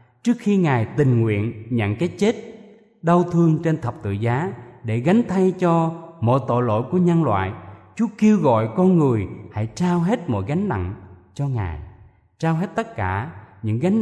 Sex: male